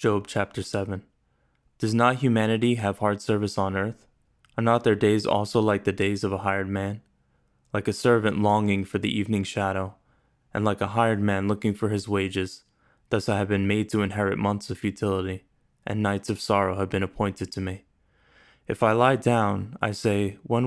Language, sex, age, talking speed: English, male, 20-39, 190 wpm